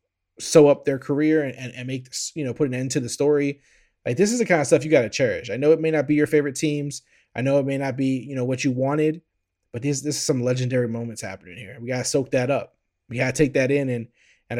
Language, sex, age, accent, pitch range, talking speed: English, male, 20-39, American, 110-155 Hz, 290 wpm